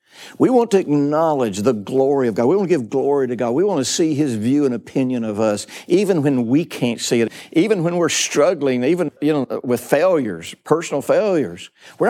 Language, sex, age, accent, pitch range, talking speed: English, male, 60-79, American, 120-170 Hz, 215 wpm